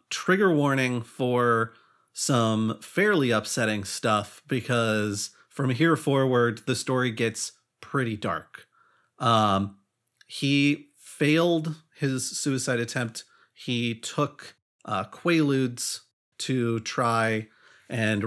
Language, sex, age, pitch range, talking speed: English, male, 40-59, 115-145 Hz, 95 wpm